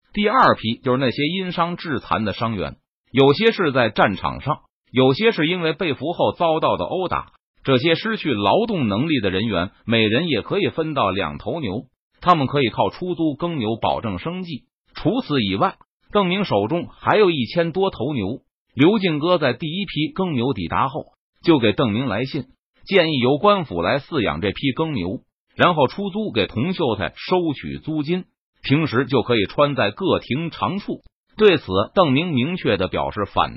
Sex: male